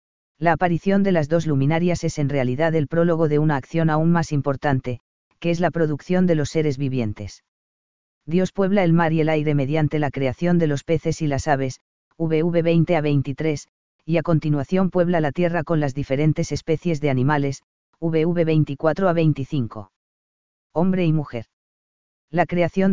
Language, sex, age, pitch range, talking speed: Spanish, female, 40-59, 145-170 Hz, 175 wpm